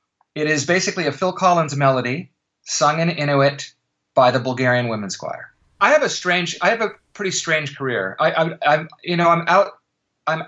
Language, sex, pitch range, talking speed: English, male, 130-170 Hz, 180 wpm